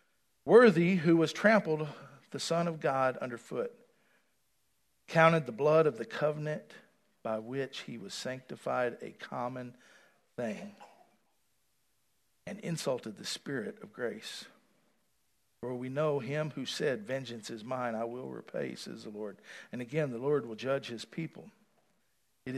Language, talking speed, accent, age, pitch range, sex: English, 140 wpm, American, 50-69, 145-225 Hz, male